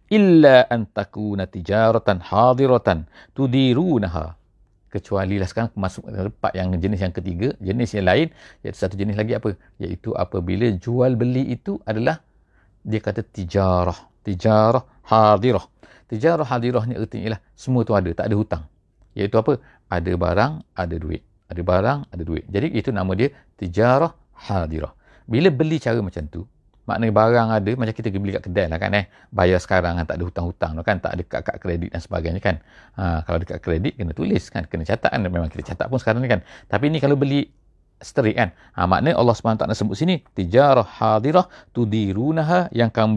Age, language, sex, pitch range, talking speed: 50-69, English, male, 95-125 Hz, 175 wpm